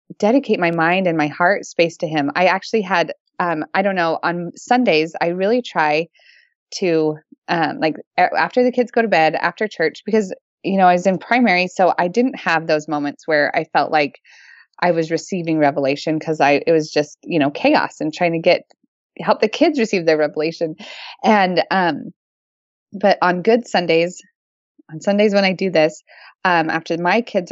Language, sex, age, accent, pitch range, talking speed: English, female, 20-39, American, 165-220 Hz, 190 wpm